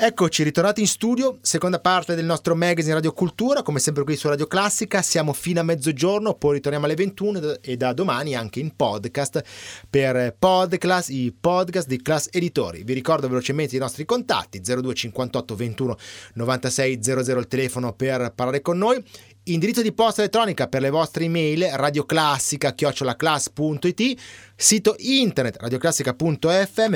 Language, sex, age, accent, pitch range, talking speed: Italian, male, 30-49, native, 125-180 Hz, 145 wpm